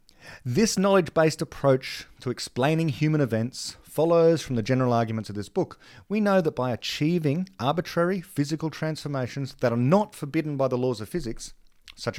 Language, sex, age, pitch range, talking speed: English, male, 40-59, 115-155 Hz, 165 wpm